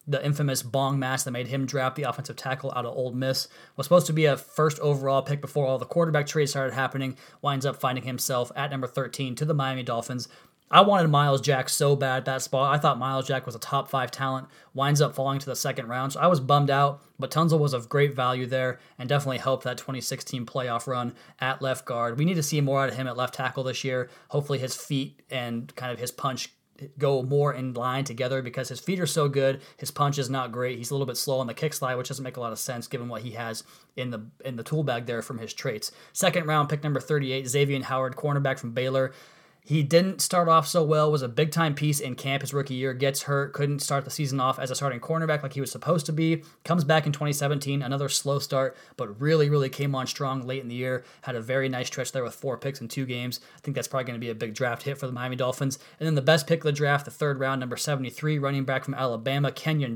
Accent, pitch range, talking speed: American, 130-145 Hz, 260 wpm